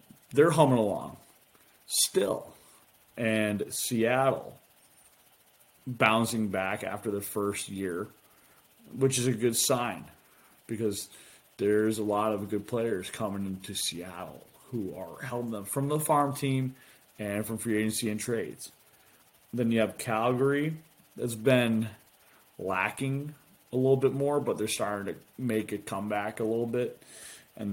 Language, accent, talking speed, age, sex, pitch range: English, American, 135 wpm, 30-49, male, 105-130 Hz